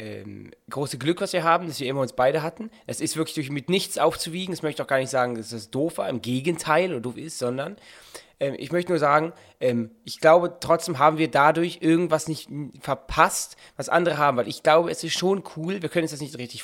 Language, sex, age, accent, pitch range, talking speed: German, male, 20-39, German, 130-165 Hz, 240 wpm